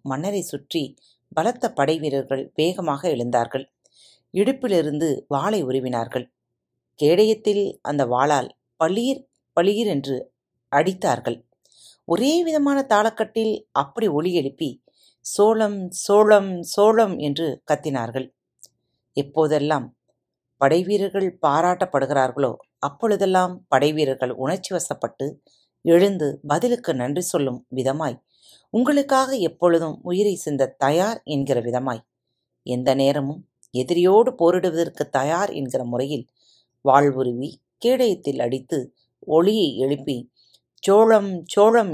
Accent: native